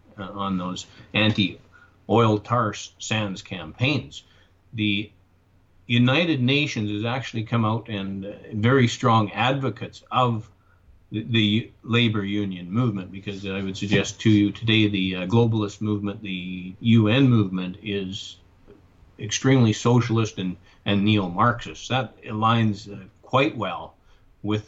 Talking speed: 125 wpm